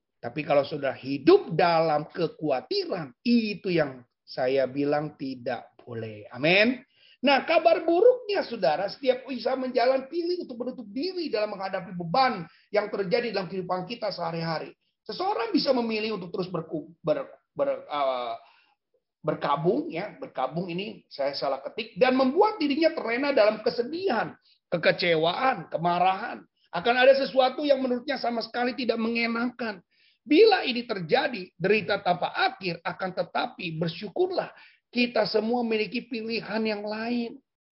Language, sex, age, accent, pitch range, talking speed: Indonesian, male, 30-49, native, 185-260 Hz, 130 wpm